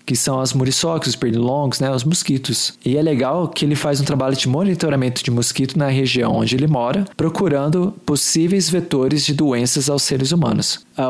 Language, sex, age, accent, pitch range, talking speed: Portuguese, male, 20-39, Brazilian, 125-155 Hz, 190 wpm